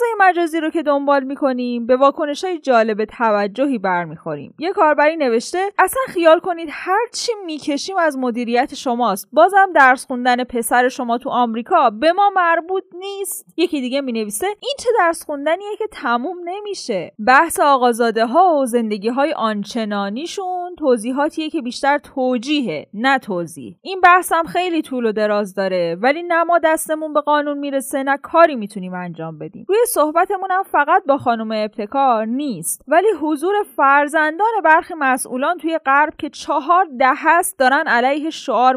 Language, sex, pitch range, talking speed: Persian, female, 235-335 Hz, 140 wpm